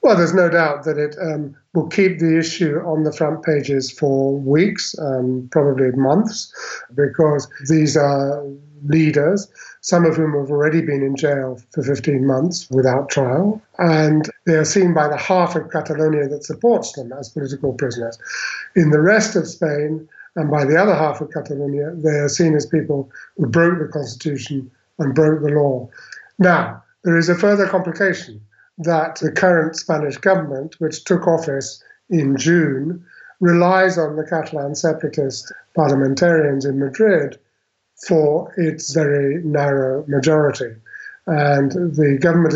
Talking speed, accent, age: 155 wpm, British, 50-69